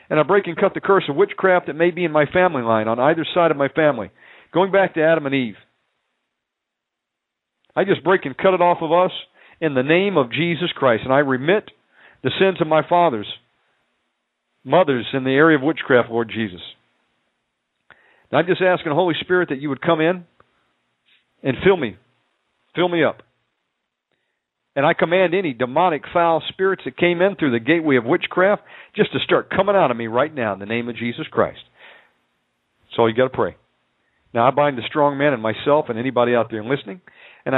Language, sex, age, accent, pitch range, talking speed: Finnish, male, 50-69, American, 120-175 Hz, 205 wpm